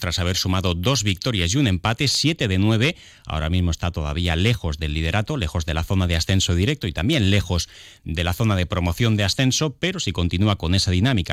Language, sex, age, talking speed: Spanish, male, 30-49, 215 wpm